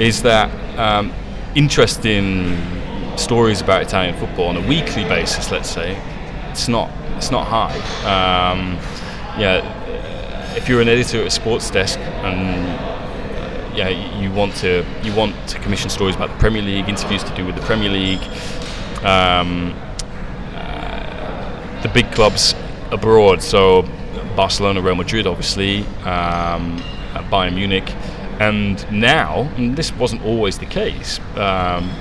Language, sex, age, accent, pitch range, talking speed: English, male, 20-39, British, 90-110 Hz, 140 wpm